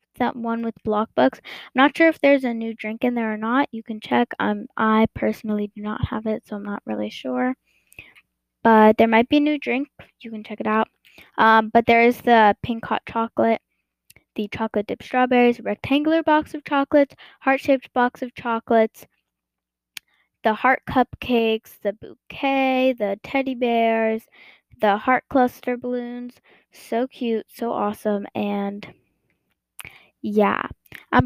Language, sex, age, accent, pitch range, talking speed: English, female, 10-29, American, 215-270 Hz, 160 wpm